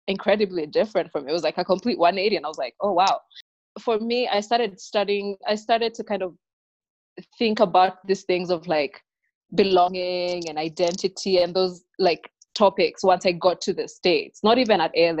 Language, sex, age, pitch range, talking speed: English, female, 20-39, 180-235 Hz, 195 wpm